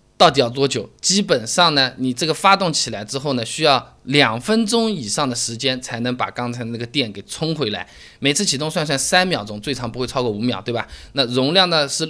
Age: 20-39